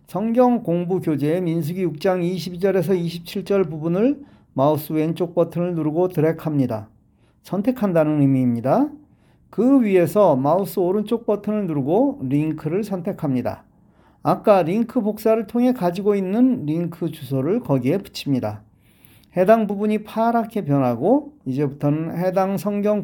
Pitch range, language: 145-210 Hz, Korean